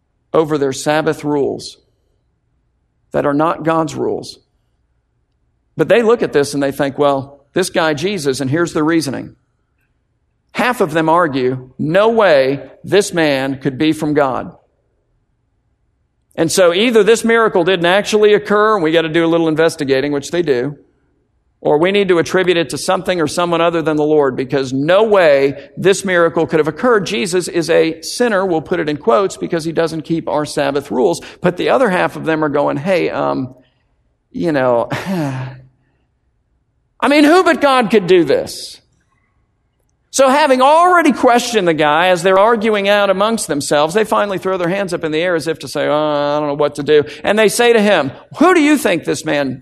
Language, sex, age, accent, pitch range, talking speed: English, male, 50-69, American, 145-200 Hz, 190 wpm